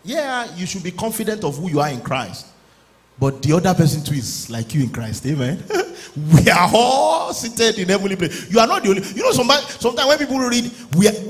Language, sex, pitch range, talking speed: English, male, 130-195 Hz, 225 wpm